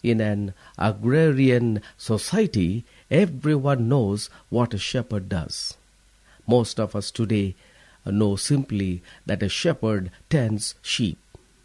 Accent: Indian